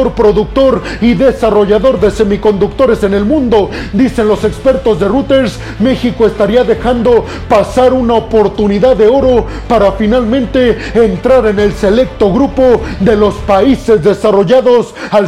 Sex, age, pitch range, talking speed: male, 40-59, 210-255 Hz, 130 wpm